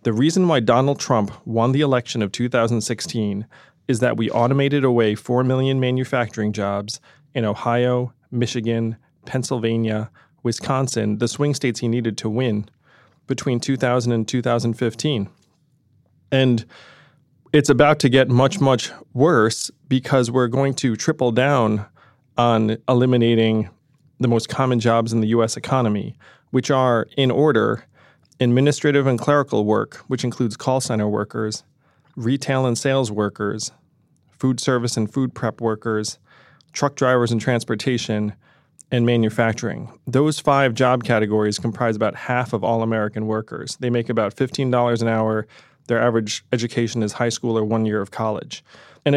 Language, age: English, 30-49